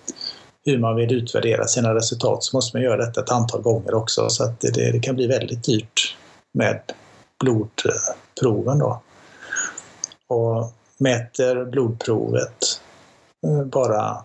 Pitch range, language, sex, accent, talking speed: 115-130 Hz, Swedish, male, native, 120 wpm